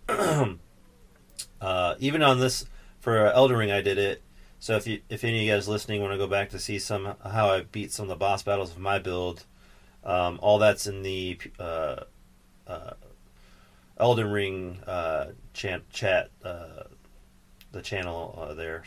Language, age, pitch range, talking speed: English, 40-59, 90-110 Hz, 170 wpm